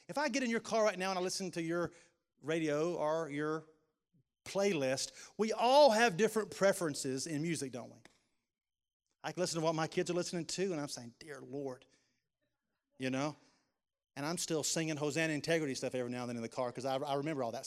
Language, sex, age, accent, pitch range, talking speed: English, male, 40-59, American, 135-180 Hz, 210 wpm